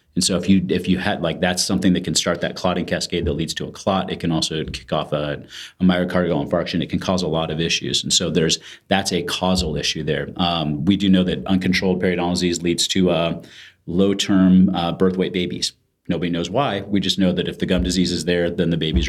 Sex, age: male, 30-49